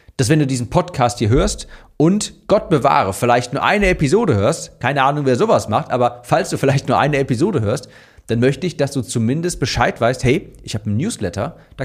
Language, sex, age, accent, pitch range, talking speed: German, male, 40-59, German, 115-165 Hz, 215 wpm